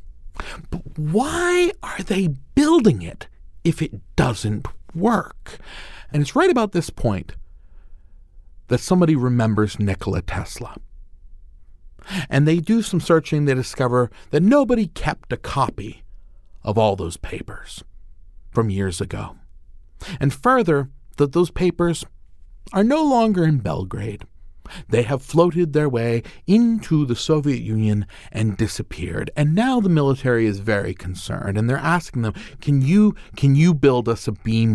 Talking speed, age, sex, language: 140 wpm, 40-59, male, English